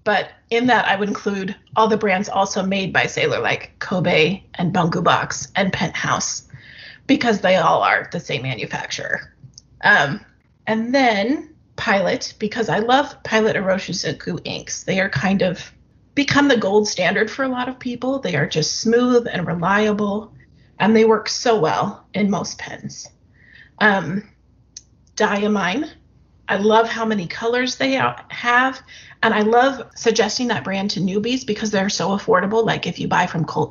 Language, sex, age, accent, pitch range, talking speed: English, female, 30-49, American, 190-230 Hz, 160 wpm